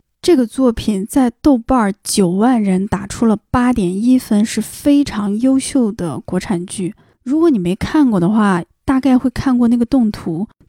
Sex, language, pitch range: female, Chinese, 185-245 Hz